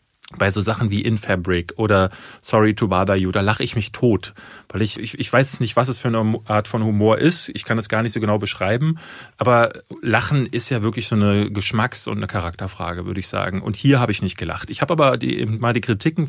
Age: 30-49